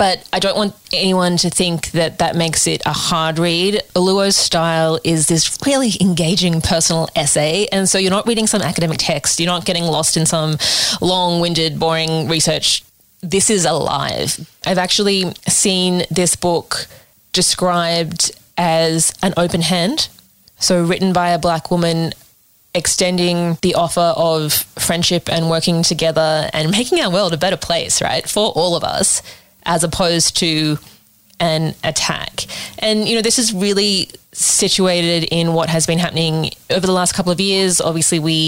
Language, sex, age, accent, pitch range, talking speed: English, female, 20-39, Australian, 160-185 Hz, 160 wpm